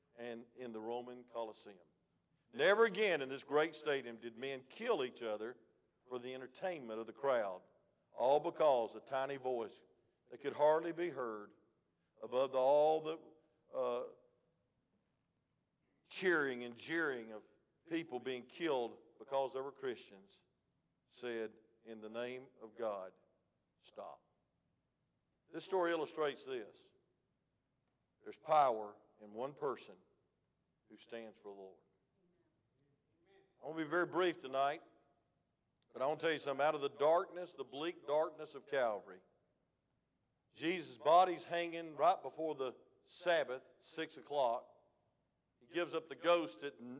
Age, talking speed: 50-69, 135 wpm